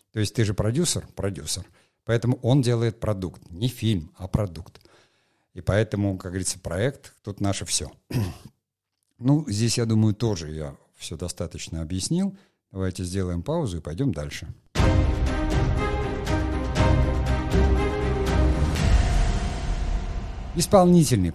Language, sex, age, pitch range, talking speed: Russian, male, 50-69, 90-115 Hz, 105 wpm